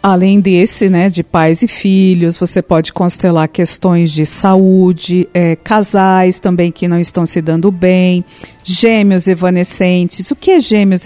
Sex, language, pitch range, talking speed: female, Portuguese, 190-250 Hz, 145 wpm